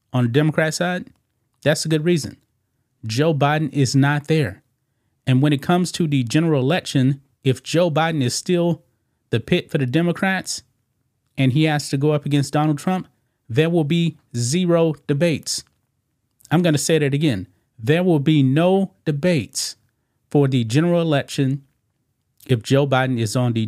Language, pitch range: English, 120-150 Hz